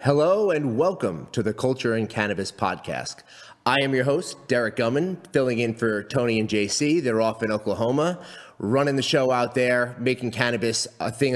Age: 30-49